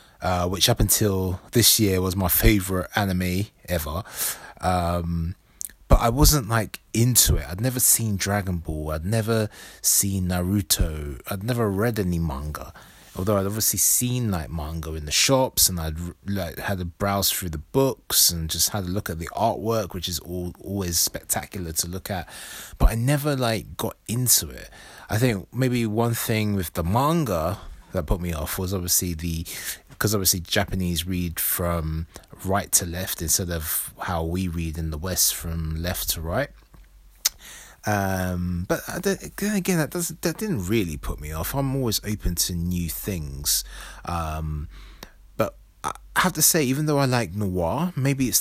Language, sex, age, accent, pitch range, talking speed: English, male, 20-39, British, 85-110 Hz, 170 wpm